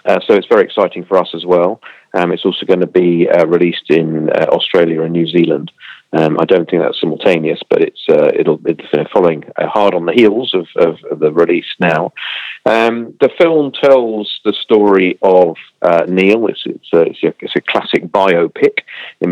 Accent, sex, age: British, male, 40-59